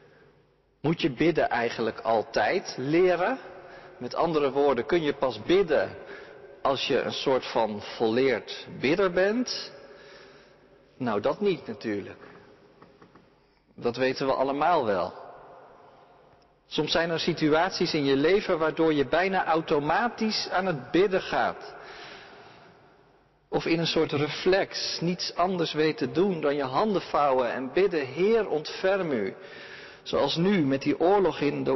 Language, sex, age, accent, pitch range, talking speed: Dutch, male, 50-69, Dutch, 145-195 Hz, 135 wpm